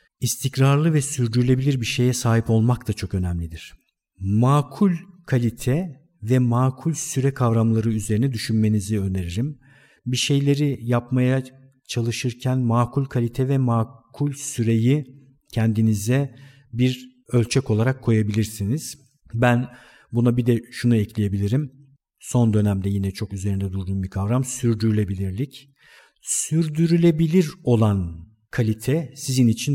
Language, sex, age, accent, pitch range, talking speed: Turkish, male, 50-69, native, 110-135 Hz, 105 wpm